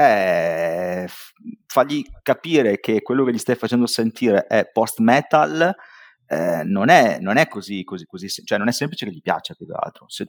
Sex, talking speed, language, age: male, 175 wpm, Italian, 30-49